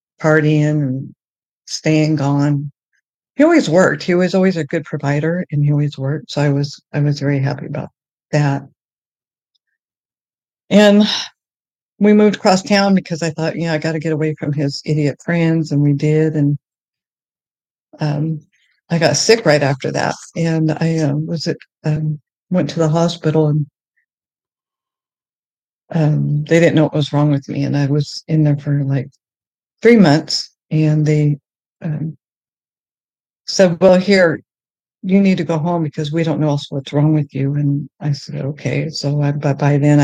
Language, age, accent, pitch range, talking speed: English, 60-79, American, 145-165 Hz, 170 wpm